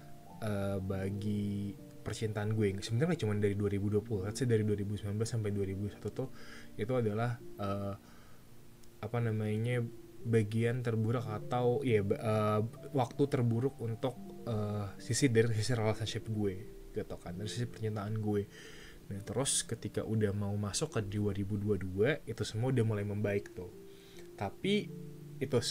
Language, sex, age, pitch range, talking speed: Malay, male, 20-39, 105-125 Hz, 130 wpm